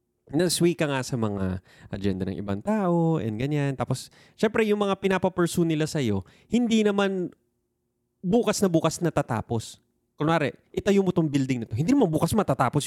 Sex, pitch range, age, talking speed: male, 115-165 Hz, 20-39, 185 wpm